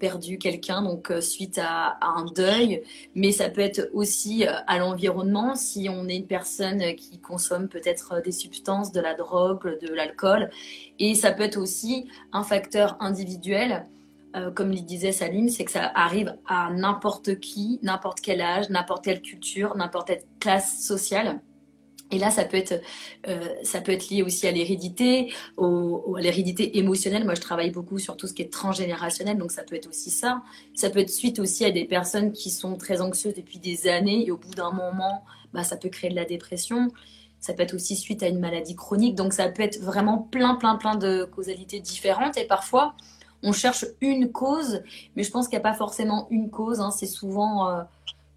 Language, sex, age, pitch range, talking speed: French, female, 20-39, 180-210 Hz, 200 wpm